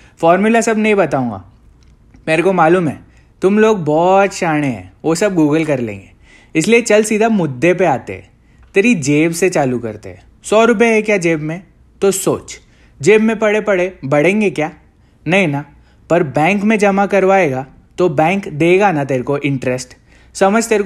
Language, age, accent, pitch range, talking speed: Hindi, 20-39, native, 140-205 Hz, 175 wpm